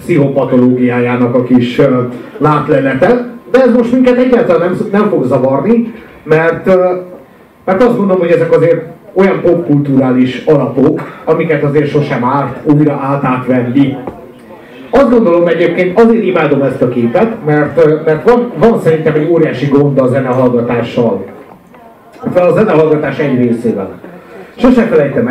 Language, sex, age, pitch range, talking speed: Hungarian, male, 50-69, 135-205 Hz, 135 wpm